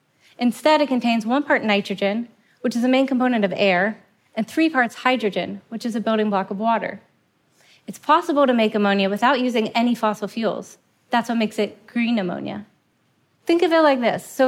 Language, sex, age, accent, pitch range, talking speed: English, female, 30-49, American, 210-260 Hz, 190 wpm